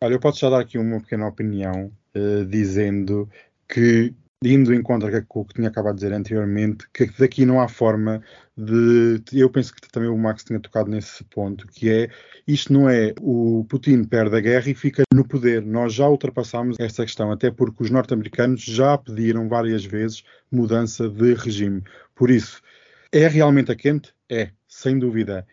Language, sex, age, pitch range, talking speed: Portuguese, male, 20-39, 110-130 Hz, 185 wpm